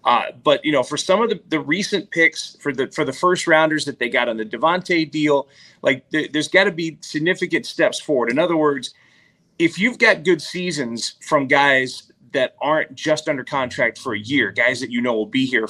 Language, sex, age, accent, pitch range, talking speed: English, male, 30-49, American, 140-175 Hz, 220 wpm